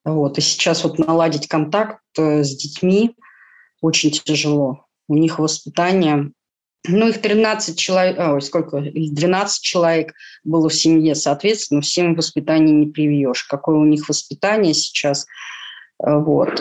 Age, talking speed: 20-39, 130 wpm